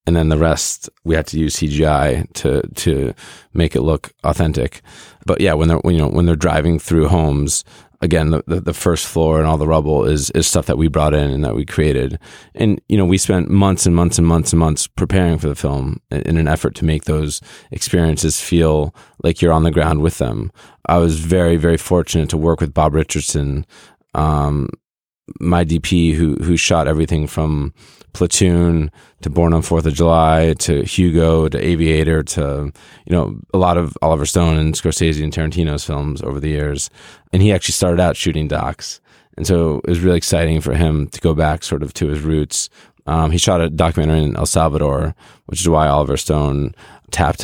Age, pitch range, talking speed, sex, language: 20-39, 75-85 Hz, 200 wpm, male, English